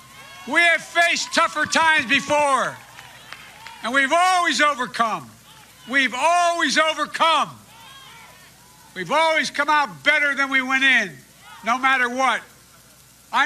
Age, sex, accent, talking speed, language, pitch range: 60-79, male, American, 115 wpm, English, 210-295 Hz